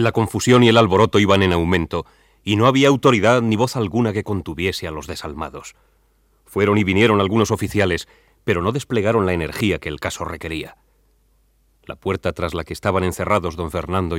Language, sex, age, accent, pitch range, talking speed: Spanish, male, 40-59, Spanish, 85-110 Hz, 180 wpm